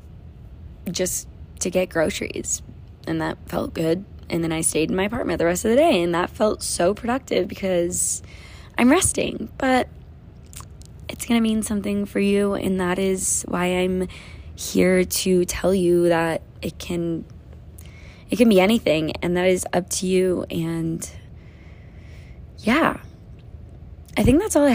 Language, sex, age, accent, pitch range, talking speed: English, female, 20-39, American, 160-195 Hz, 155 wpm